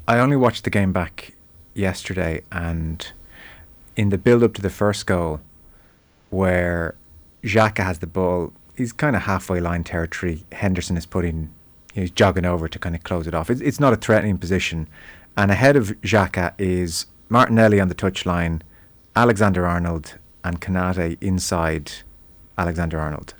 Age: 30-49